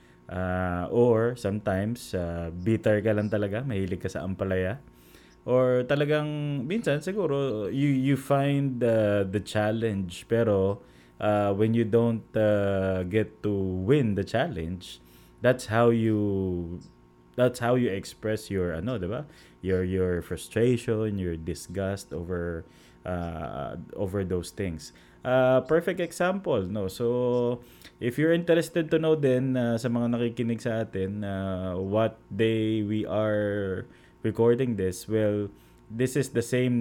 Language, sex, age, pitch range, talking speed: Filipino, male, 20-39, 90-115 Hz, 135 wpm